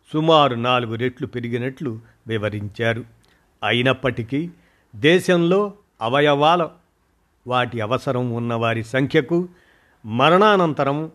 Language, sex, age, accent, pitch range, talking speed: Telugu, male, 50-69, native, 115-145 Hz, 70 wpm